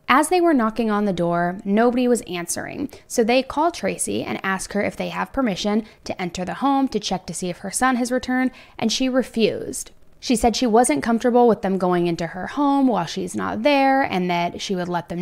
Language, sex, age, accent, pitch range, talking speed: English, female, 20-39, American, 185-255 Hz, 230 wpm